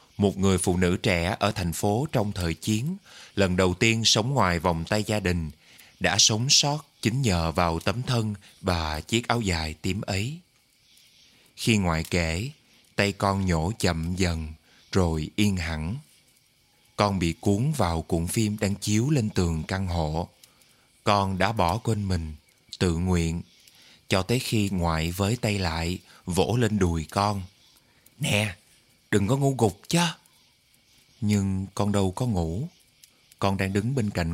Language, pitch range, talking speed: Vietnamese, 90-115 Hz, 160 wpm